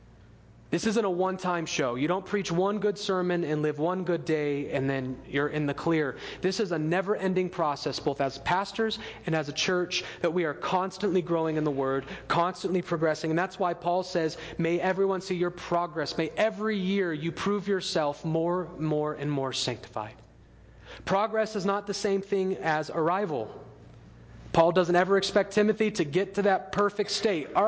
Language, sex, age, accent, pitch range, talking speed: English, male, 30-49, American, 150-190 Hz, 185 wpm